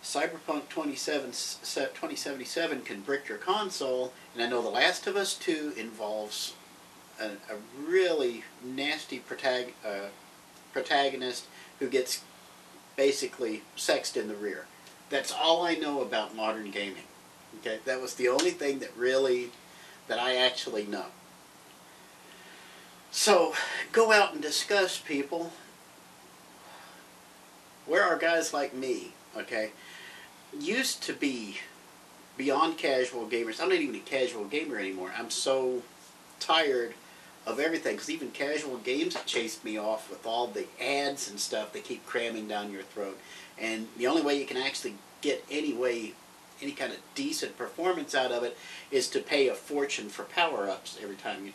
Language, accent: English, American